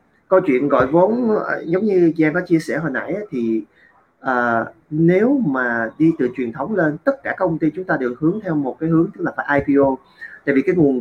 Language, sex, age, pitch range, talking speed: Vietnamese, male, 20-39, 125-165 Hz, 235 wpm